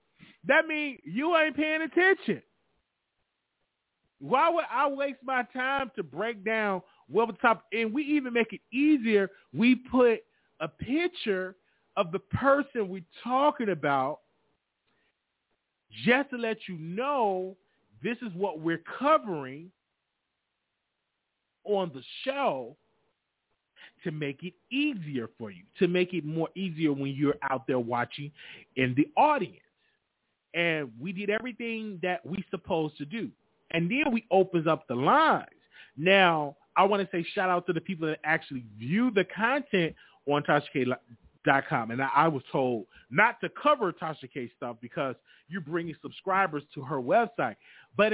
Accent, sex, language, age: American, male, English, 30-49